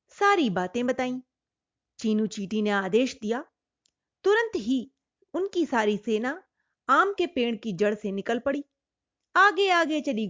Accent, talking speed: native, 140 wpm